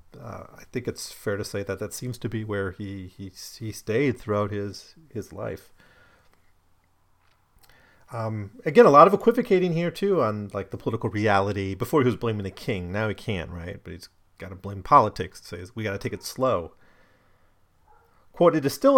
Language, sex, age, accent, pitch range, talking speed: English, male, 40-59, American, 95-125 Hz, 195 wpm